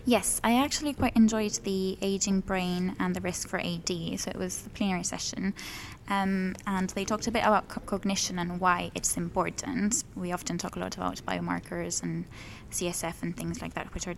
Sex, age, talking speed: female, 20-39, 195 wpm